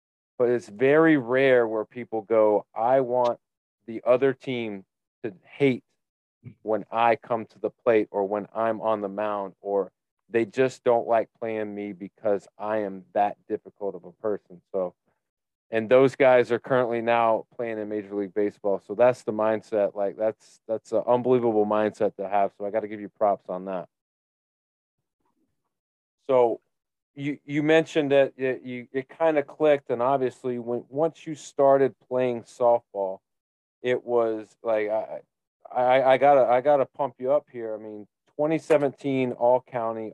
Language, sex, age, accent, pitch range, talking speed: English, male, 30-49, American, 110-135 Hz, 165 wpm